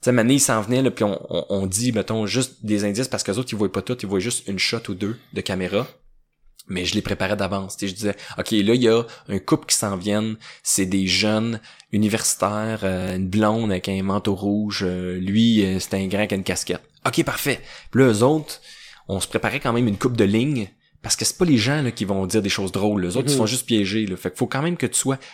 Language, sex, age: French, male, 20-39